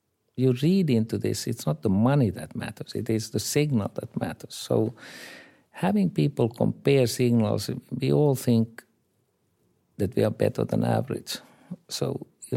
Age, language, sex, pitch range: 50-69, English, male, 100-120 Hz